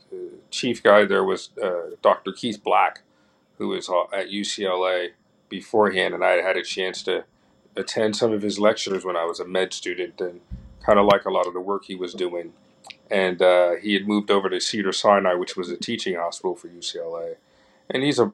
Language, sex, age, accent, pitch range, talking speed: English, male, 40-59, American, 95-110 Hz, 205 wpm